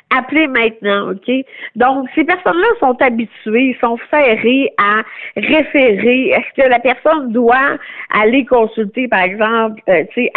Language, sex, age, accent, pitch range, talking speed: French, female, 50-69, Canadian, 230-290 Hz, 125 wpm